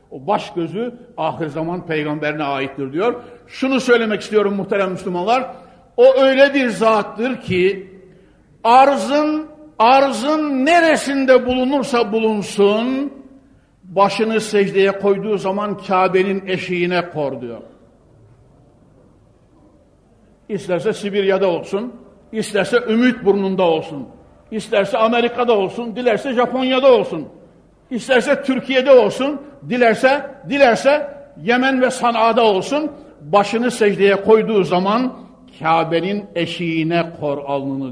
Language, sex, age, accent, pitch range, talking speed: Turkish, male, 60-79, native, 160-240 Hz, 95 wpm